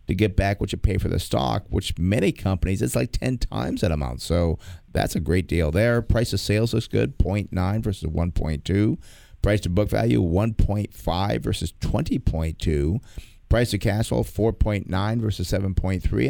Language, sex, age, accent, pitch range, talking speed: English, male, 50-69, American, 90-110 Hz, 170 wpm